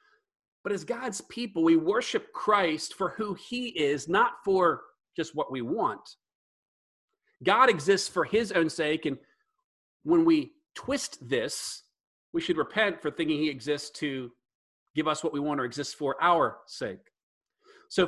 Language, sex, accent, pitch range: English, male, American, 145-210 Hz